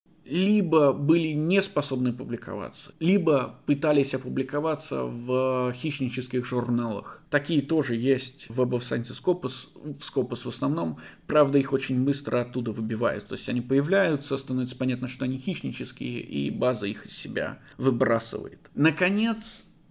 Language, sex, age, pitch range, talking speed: Russian, male, 20-39, 125-155 Hz, 125 wpm